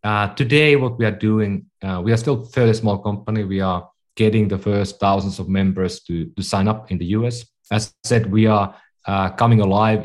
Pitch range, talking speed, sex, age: 95-110 Hz, 220 wpm, male, 30-49